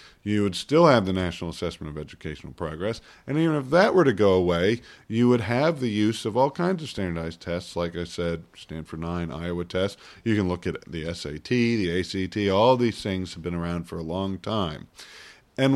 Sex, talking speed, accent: male, 210 wpm, American